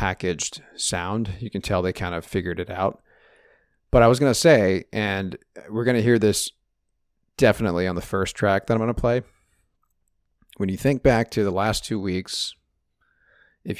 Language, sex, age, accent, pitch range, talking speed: English, male, 40-59, American, 85-115 Hz, 185 wpm